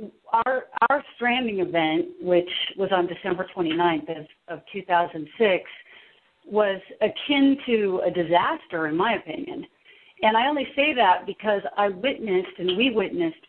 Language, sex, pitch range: English, female, 175-210 Hz